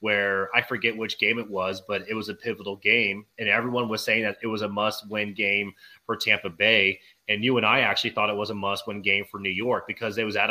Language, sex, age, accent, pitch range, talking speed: English, male, 30-49, American, 100-115 Hz, 250 wpm